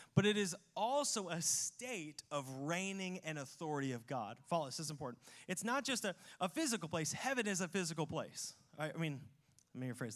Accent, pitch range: American, 150-205 Hz